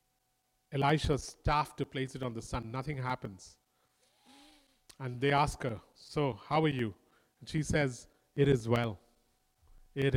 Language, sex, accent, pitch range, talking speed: English, male, Indian, 125-150 Hz, 150 wpm